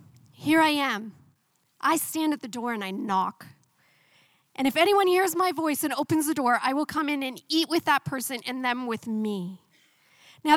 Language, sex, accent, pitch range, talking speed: English, female, American, 240-330 Hz, 200 wpm